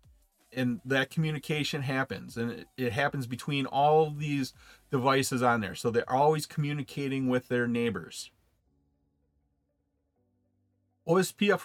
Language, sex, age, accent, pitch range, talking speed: English, male, 40-59, American, 130-165 Hz, 115 wpm